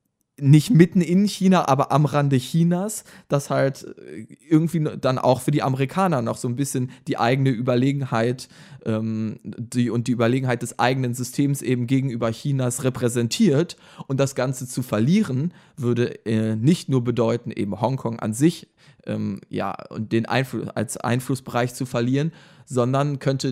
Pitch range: 120-145 Hz